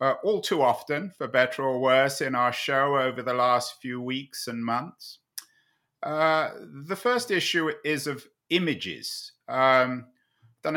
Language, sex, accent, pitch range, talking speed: English, male, British, 120-140 Hz, 150 wpm